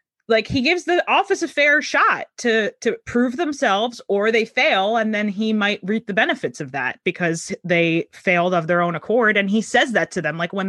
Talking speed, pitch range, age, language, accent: 220 wpm, 180-245 Hz, 20-39, English, American